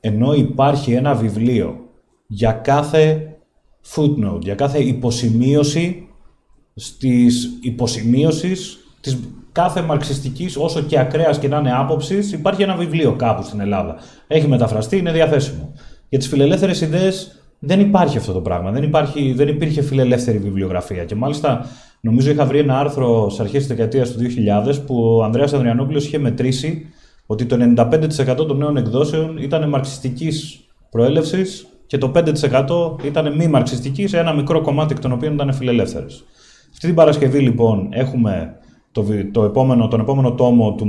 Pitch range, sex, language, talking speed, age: 115-155 Hz, male, Greek, 150 wpm, 30-49